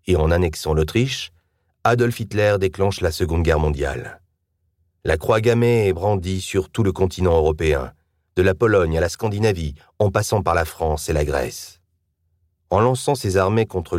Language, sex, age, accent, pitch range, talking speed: French, male, 40-59, French, 85-105 Hz, 165 wpm